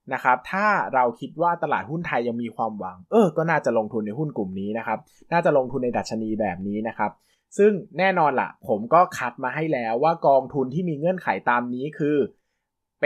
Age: 20-39